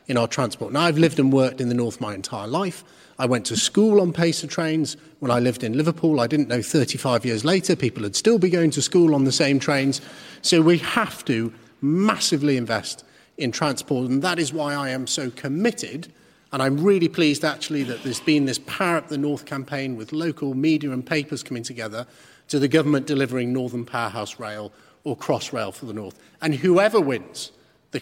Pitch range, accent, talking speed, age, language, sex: 115-150 Hz, British, 205 wpm, 40-59, English, male